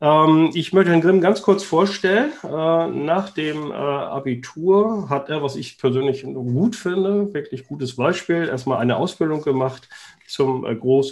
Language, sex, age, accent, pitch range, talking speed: German, male, 50-69, German, 125-165 Hz, 140 wpm